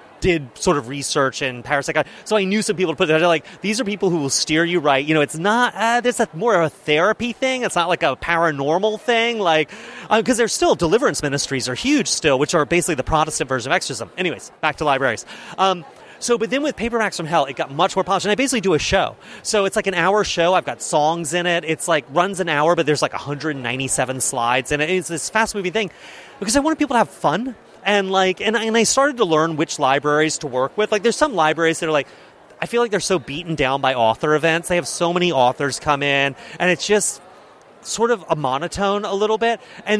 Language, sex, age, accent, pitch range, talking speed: English, male, 30-49, American, 150-205 Hz, 250 wpm